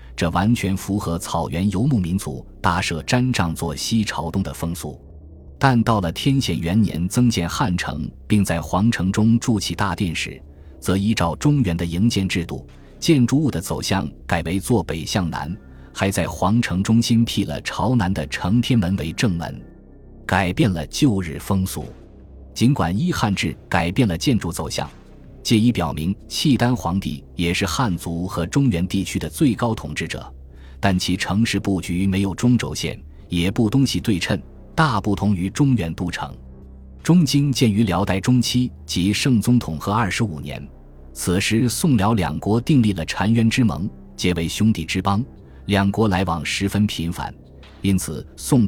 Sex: male